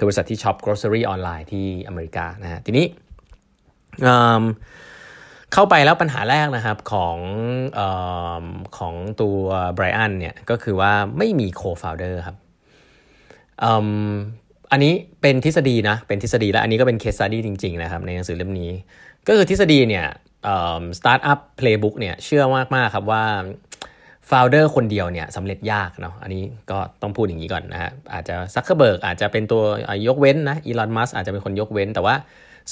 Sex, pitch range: male, 90-120 Hz